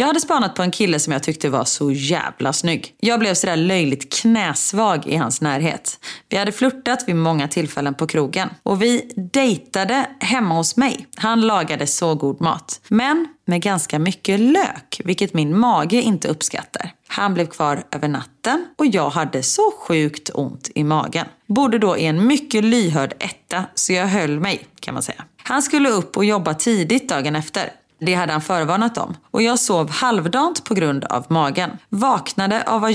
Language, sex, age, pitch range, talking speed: Swedish, female, 30-49, 160-235 Hz, 185 wpm